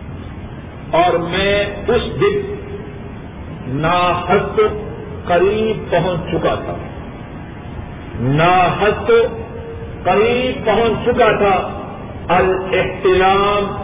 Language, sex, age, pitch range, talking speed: Urdu, male, 50-69, 135-215 Hz, 65 wpm